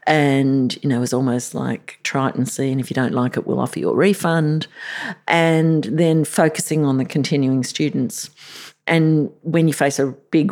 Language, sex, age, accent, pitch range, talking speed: English, female, 50-69, Australian, 135-170 Hz, 200 wpm